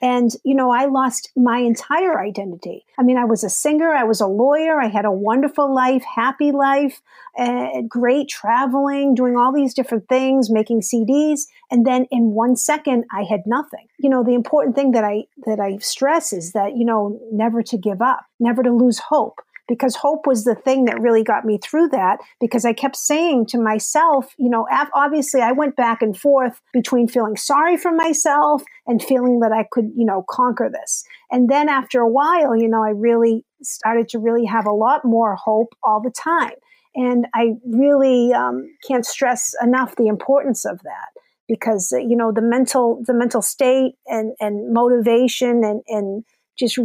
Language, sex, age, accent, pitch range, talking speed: English, female, 50-69, American, 225-275 Hz, 190 wpm